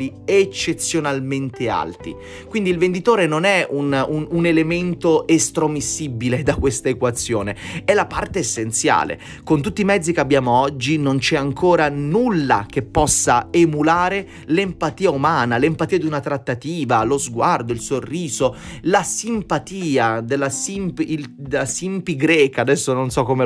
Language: Italian